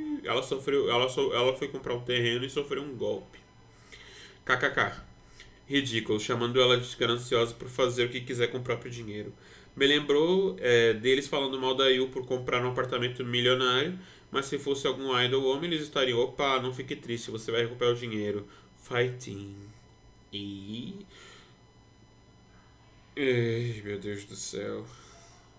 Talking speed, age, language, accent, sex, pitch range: 155 wpm, 20-39, Portuguese, Brazilian, male, 110-135 Hz